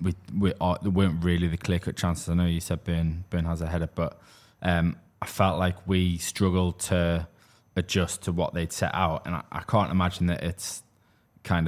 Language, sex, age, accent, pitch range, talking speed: English, male, 20-39, British, 85-95 Hz, 195 wpm